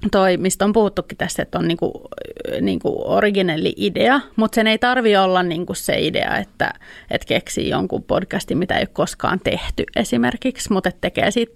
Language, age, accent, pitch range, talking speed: Finnish, 30-49, native, 185-225 Hz, 185 wpm